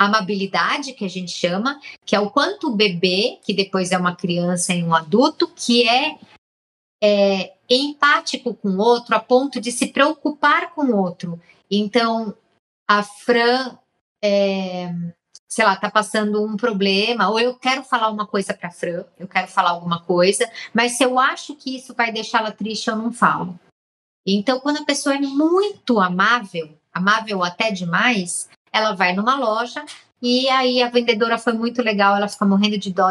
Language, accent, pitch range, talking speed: Portuguese, Brazilian, 190-240 Hz, 170 wpm